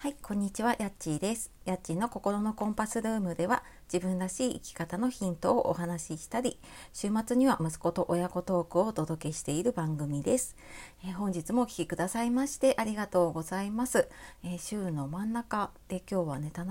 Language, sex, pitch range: Japanese, female, 160-225 Hz